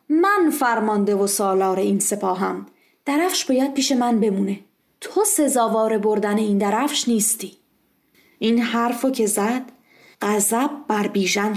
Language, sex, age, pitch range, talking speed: Persian, female, 30-49, 210-290 Hz, 125 wpm